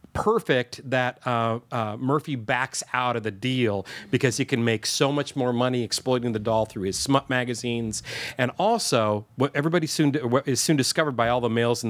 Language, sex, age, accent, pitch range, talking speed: English, male, 40-59, American, 115-135 Hz, 200 wpm